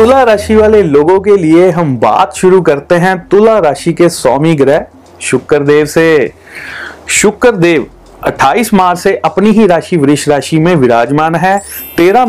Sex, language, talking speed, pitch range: male, Hindi, 135 wpm, 150-195 Hz